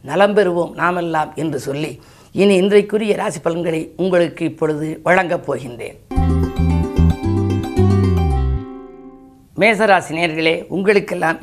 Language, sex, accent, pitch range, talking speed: Tamil, female, native, 150-190 Hz, 80 wpm